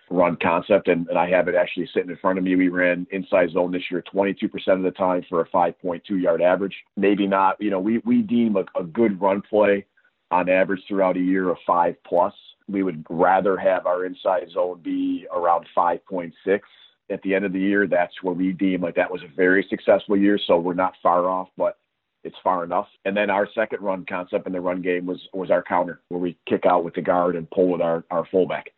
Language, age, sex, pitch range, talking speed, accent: English, 40-59, male, 90-100 Hz, 235 wpm, American